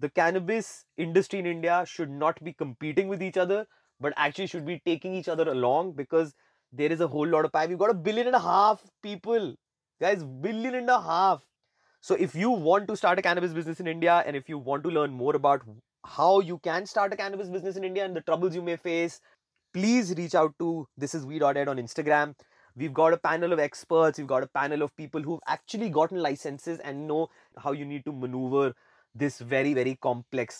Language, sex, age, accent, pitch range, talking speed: English, male, 20-39, Indian, 140-185 Hz, 220 wpm